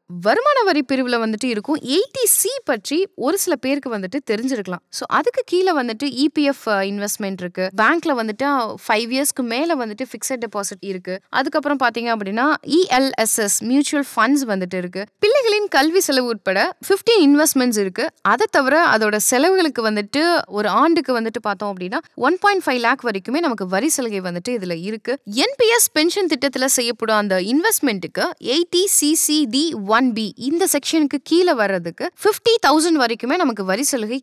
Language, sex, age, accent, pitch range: Tamil, female, 20-39, native, 220-335 Hz